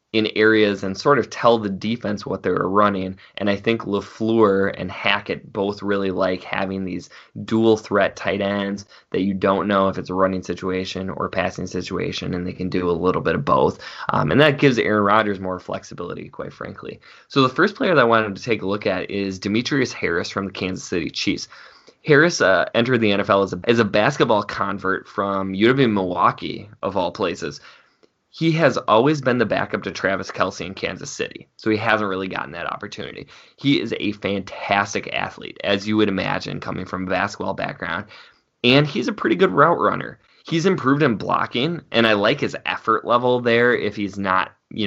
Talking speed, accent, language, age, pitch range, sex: 200 wpm, American, English, 20-39, 95-115 Hz, male